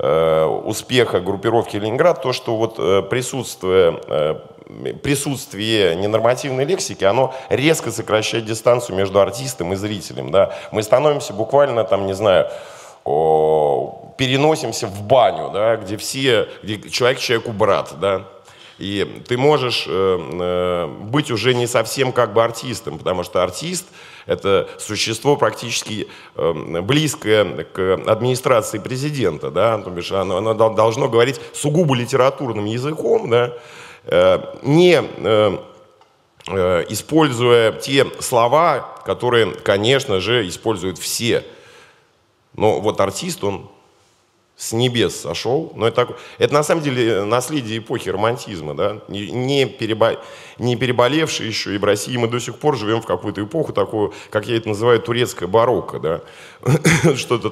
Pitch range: 110-145 Hz